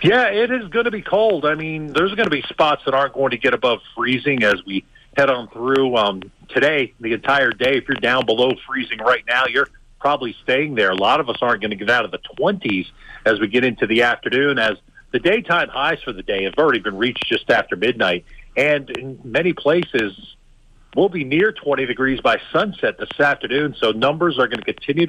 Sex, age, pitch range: male, 50-69, 130-190 Hz